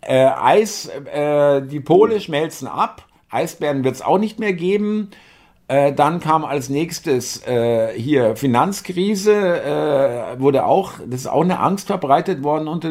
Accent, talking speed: German, 155 wpm